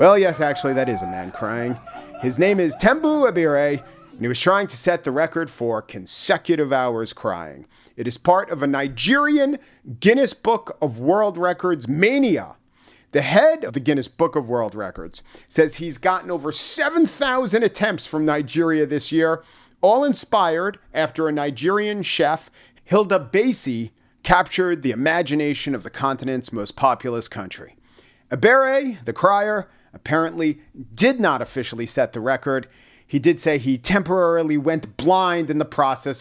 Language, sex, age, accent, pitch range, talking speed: English, male, 40-59, American, 125-185 Hz, 155 wpm